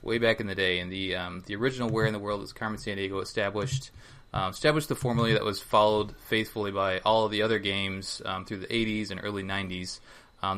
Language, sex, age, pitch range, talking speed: English, male, 20-39, 100-120 Hz, 235 wpm